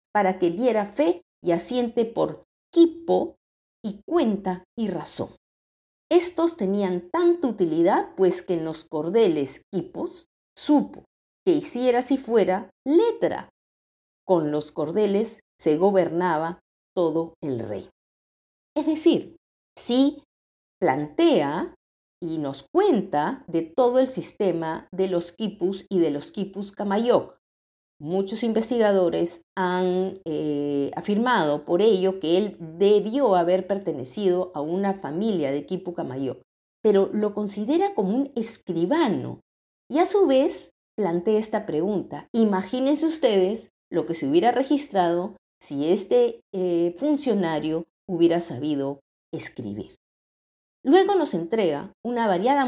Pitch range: 170-255 Hz